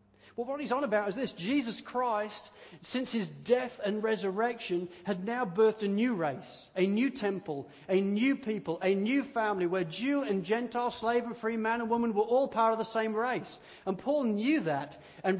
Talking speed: 200 wpm